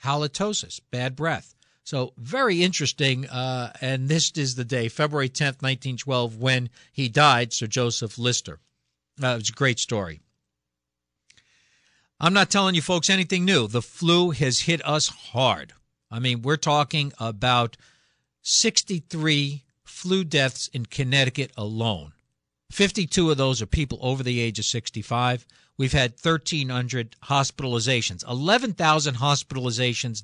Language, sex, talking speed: English, male, 135 wpm